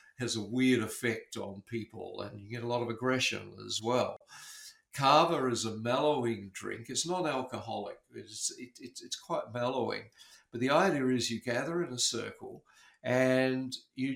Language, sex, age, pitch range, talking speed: English, male, 50-69, 115-145 Hz, 170 wpm